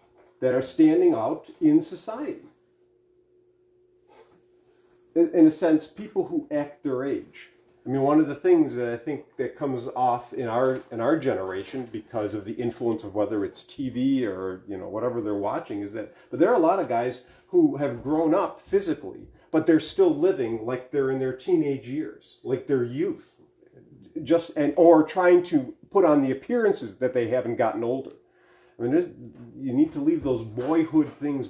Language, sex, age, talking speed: English, male, 40-59, 185 wpm